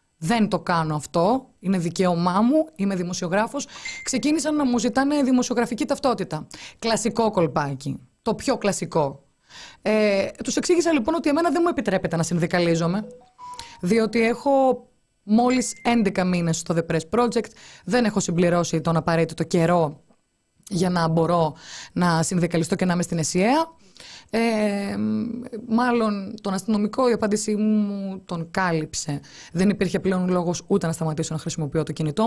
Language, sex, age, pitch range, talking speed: Greek, female, 20-39, 165-235 Hz, 140 wpm